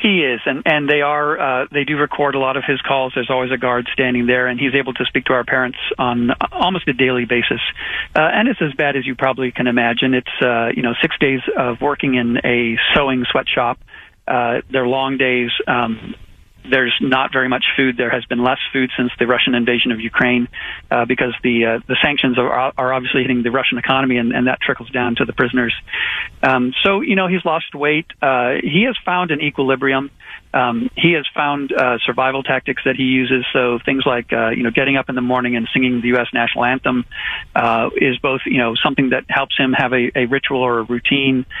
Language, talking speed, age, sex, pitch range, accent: English, 220 wpm, 40-59, male, 125-145 Hz, American